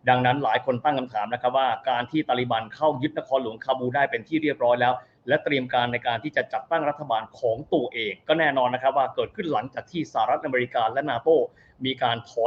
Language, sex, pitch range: Thai, male, 125-170 Hz